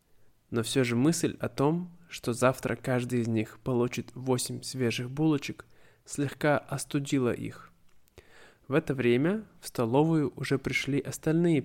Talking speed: 135 wpm